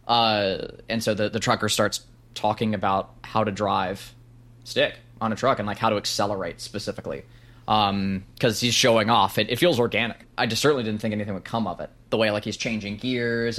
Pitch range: 105-120 Hz